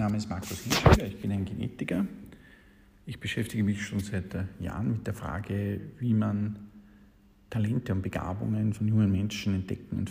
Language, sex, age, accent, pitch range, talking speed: German, male, 50-69, Austrian, 95-115 Hz, 160 wpm